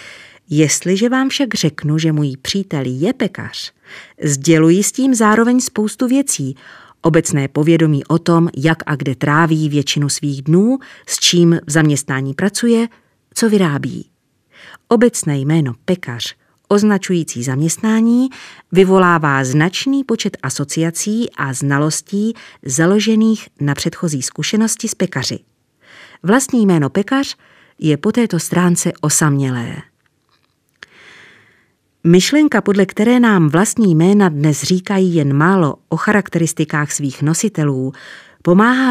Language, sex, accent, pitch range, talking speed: Czech, female, native, 150-215 Hz, 115 wpm